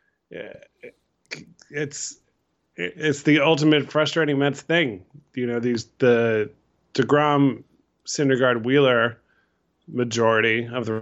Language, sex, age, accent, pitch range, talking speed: English, male, 20-39, American, 105-140 Hz, 80 wpm